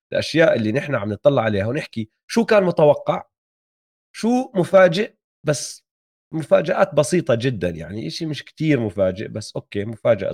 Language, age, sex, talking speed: Arabic, 30-49, male, 140 wpm